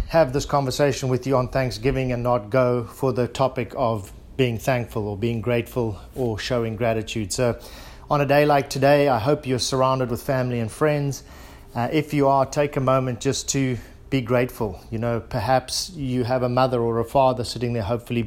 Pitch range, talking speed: 120-140 Hz, 195 wpm